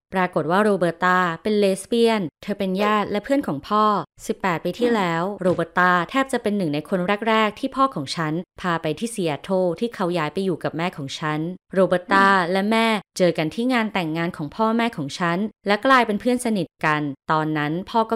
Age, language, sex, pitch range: 20-39, Thai, female, 165-215 Hz